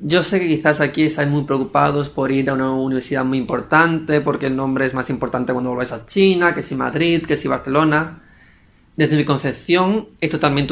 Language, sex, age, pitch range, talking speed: Spanish, male, 20-39, 125-145 Hz, 205 wpm